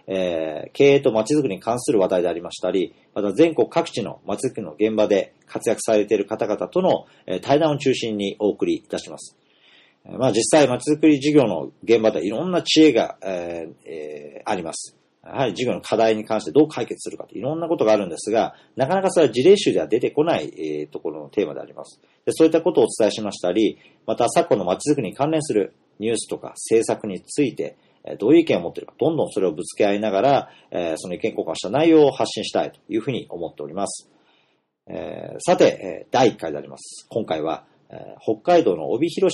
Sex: male